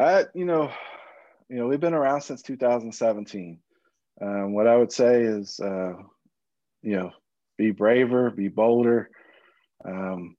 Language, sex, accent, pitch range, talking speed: English, male, American, 100-120 Hz, 140 wpm